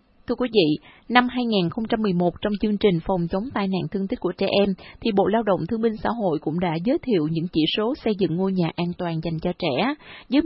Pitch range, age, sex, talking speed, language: 185-235 Hz, 20-39, female, 240 wpm, Vietnamese